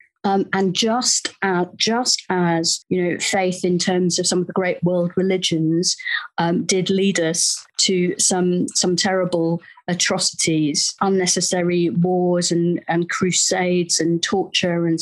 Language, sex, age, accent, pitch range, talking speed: English, female, 40-59, British, 175-195 Hz, 140 wpm